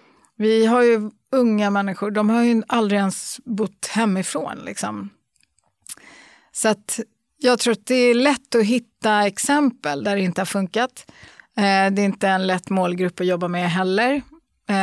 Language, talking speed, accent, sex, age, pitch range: Swedish, 160 wpm, native, female, 30-49, 190-220 Hz